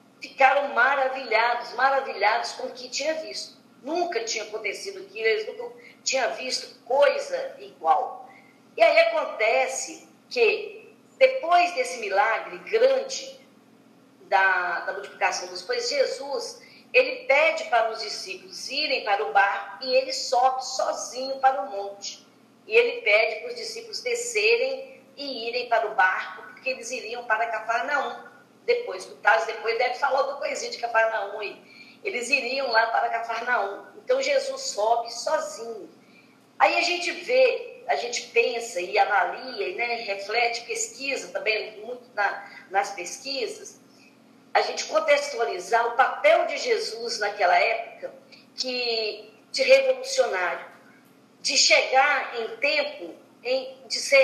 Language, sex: Portuguese, female